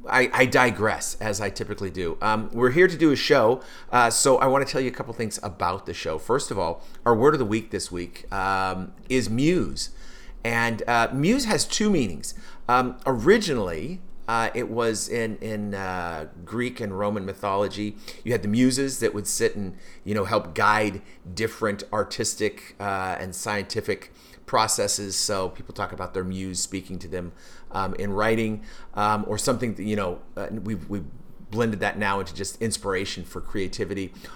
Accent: American